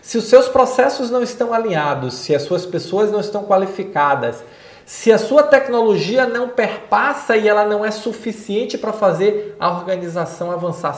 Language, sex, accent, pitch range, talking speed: Portuguese, male, Brazilian, 170-215 Hz, 165 wpm